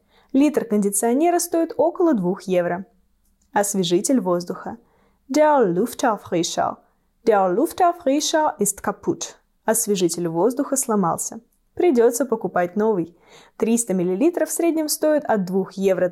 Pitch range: 195-290 Hz